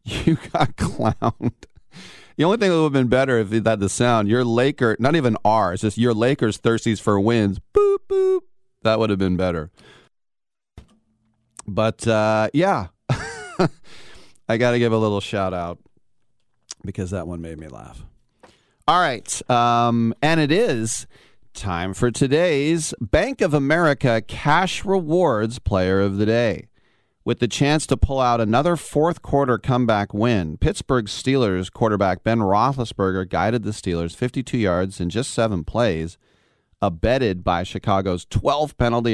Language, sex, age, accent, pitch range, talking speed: English, male, 40-59, American, 100-130 Hz, 150 wpm